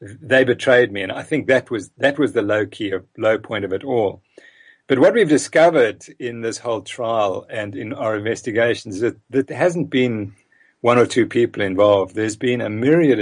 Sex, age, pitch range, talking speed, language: male, 50-69, 115-155 Hz, 210 wpm, English